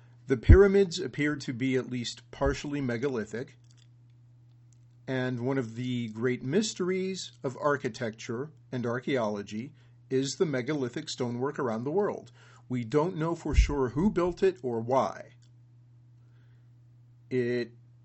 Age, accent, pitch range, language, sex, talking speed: 40-59, American, 120-140 Hz, English, male, 125 wpm